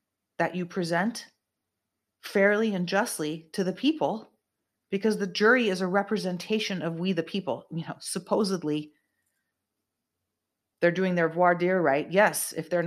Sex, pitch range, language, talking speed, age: female, 155-190 Hz, English, 145 wpm, 30-49